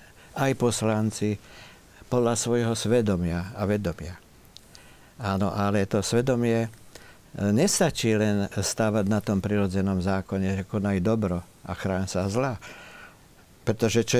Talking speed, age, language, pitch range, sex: 115 wpm, 50-69, Slovak, 95-110 Hz, male